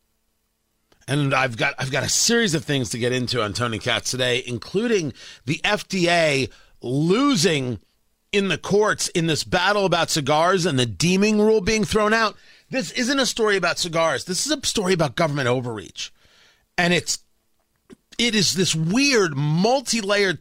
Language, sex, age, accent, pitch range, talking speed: English, male, 40-59, American, 130-210 Hz, 160 wpm